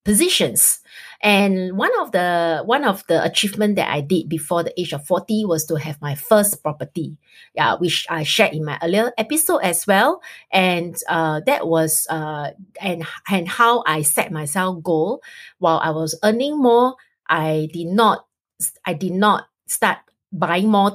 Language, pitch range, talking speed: English, 165-215 Hz, 165 wpm